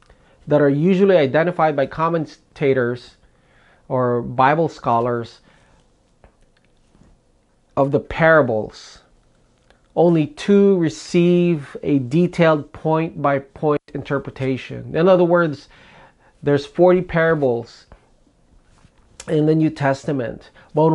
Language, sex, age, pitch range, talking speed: English, male, 30-49, 135-165 Hz, 85 wpm